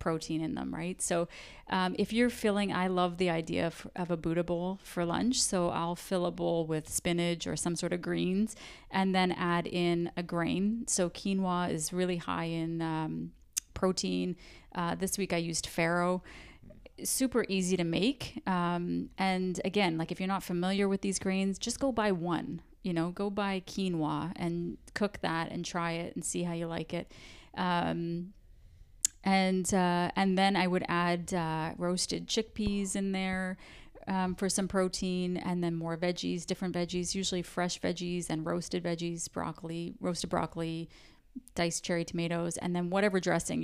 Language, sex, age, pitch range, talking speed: English, female, 30-49, 170-190 Hz, 175 wpm